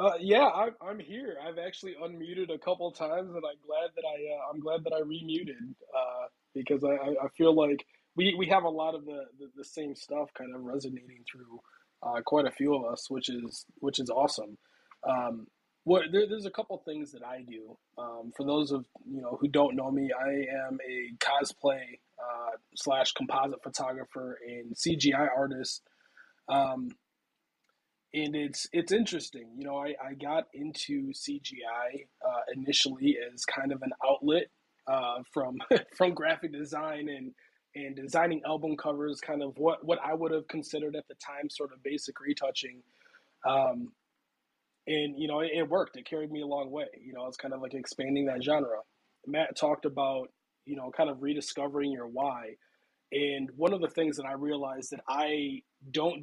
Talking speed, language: 185 wpm, English